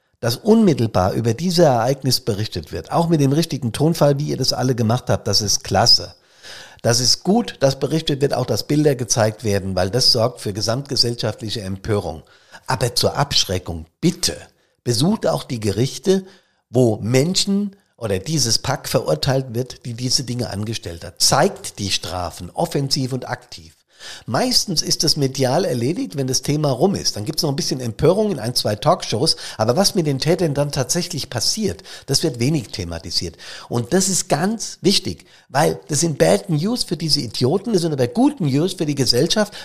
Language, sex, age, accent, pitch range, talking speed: German, male, 50-69, German, 115-170 Hz, 180 wpm